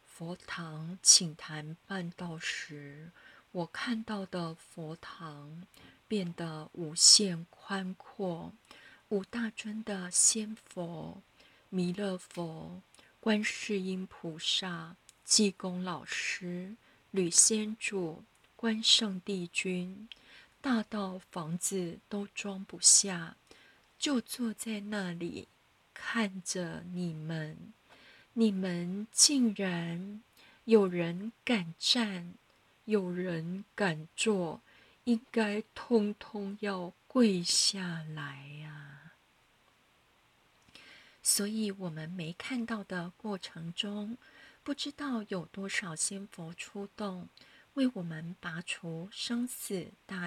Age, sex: 30-49, female